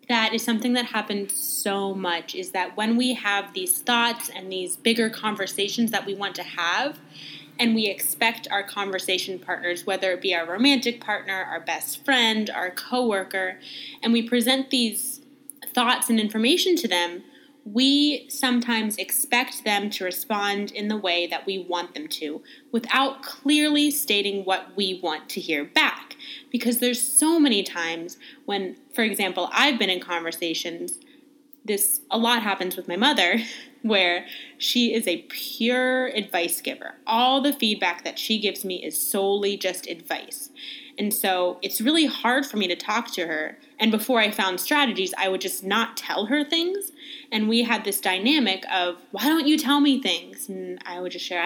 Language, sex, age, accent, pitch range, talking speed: English, female, 10-29, American, 190-275 Hz, 175 wpm